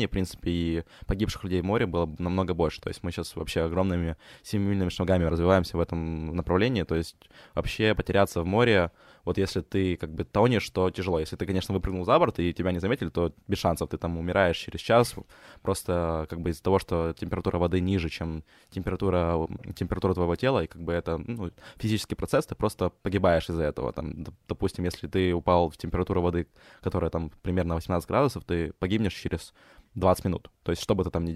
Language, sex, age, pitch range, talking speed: Ukrainian, male, 20-39, 85-100 Hz, 200 wpm